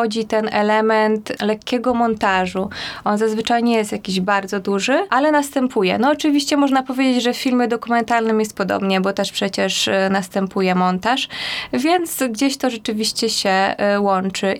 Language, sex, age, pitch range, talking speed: Polish, female, 20-39, 200-235 Hz, 140 wpm